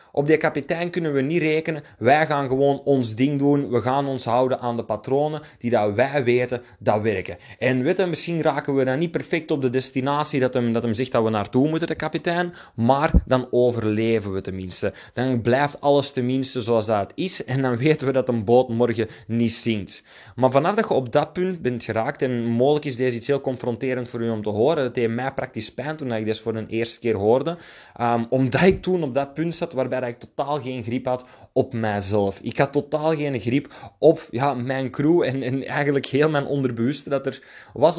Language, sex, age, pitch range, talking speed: Dutch, male, 20-39, 120-145 Hz, 220 wpm